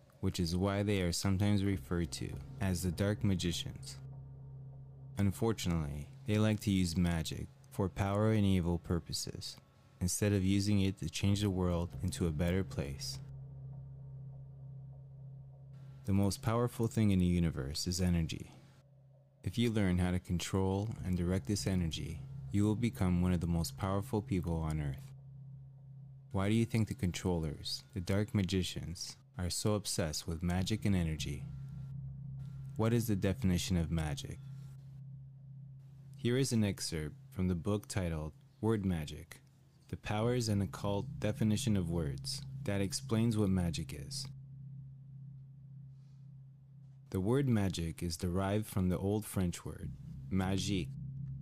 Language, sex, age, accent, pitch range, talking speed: Finnish, male, 20-39, American, 95-135 Hz, 140 wpm